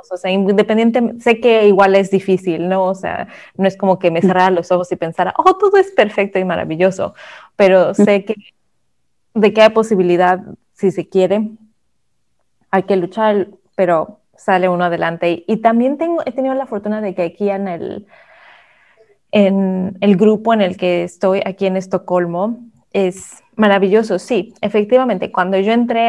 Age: 20-39